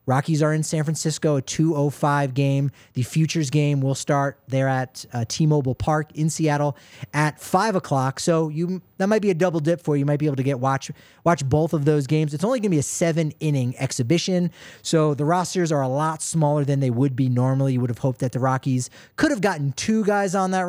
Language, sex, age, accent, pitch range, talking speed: English, male, 30-49, American, 130-165 Hz, 240 wpm